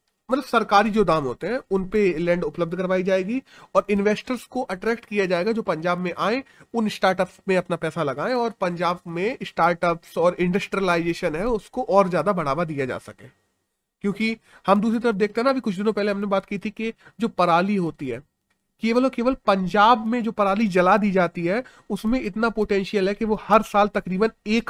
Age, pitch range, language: 30-49, 175-230 Hz, Hindi